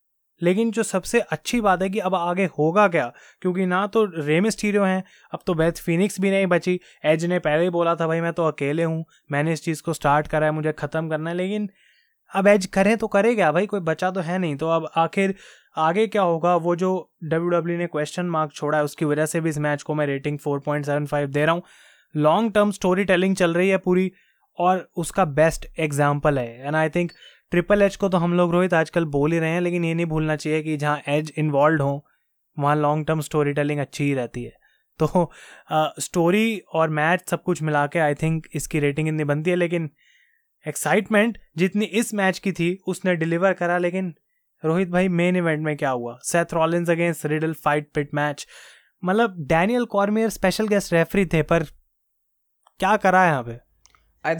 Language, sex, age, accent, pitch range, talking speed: Hindi, male, 20-39, native, 155-190 Hz, 195 wpm